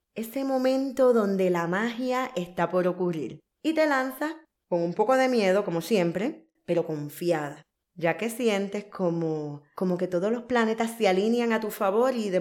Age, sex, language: 10-29, female, Spanish